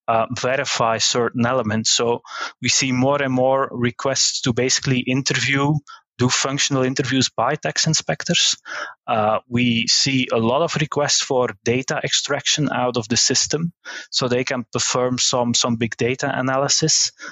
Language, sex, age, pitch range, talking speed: German, male, 20-39, 120-140 Hz, 150 wpm